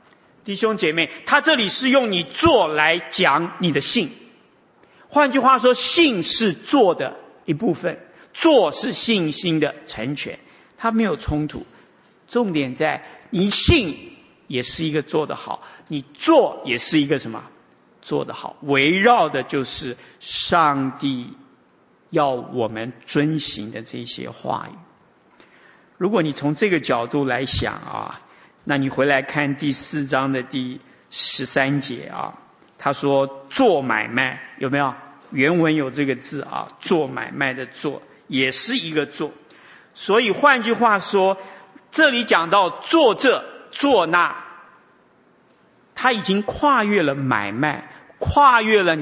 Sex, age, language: male, 50-69, Chinese